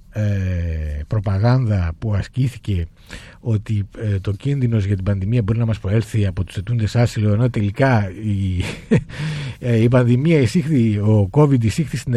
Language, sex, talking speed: Greek, male, 150 wpm